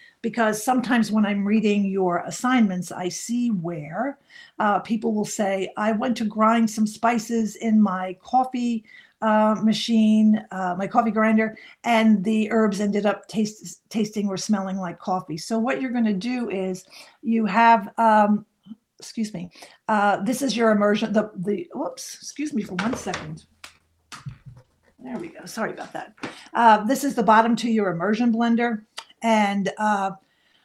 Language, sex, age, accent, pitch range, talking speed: English, female, 50-69, American, 200-235 Hz, 160 wpm